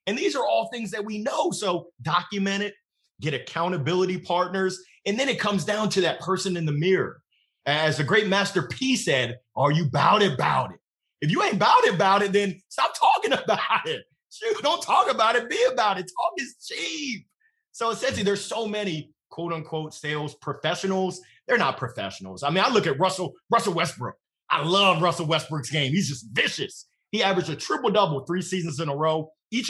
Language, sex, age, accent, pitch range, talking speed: English, male, 30-49, American, 160-215 Hz, 200 wpm